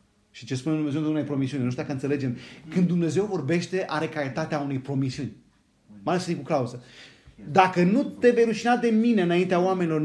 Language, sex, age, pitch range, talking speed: Romanian, male, 30-49, 130-190 Hz, 205 wpm